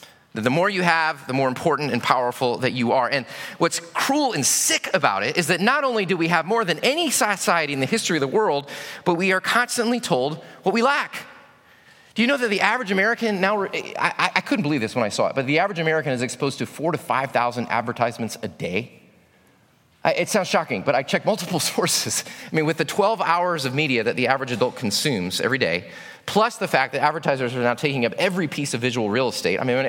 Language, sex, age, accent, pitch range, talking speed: English, male, 30-49, American, 165-245 Hz, 225 wpm